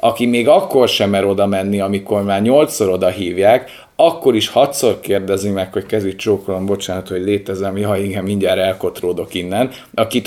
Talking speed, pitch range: 170 wpm, 100-120 Hz